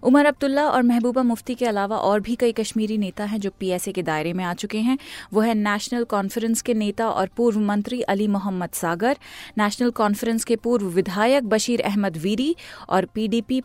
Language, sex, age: Hindi, female, 30-49